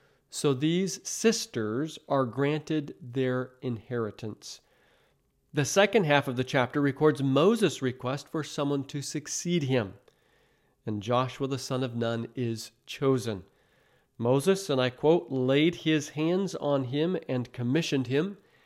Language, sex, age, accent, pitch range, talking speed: English, male, 40-59, American, 130-165 Hz, 130 wpm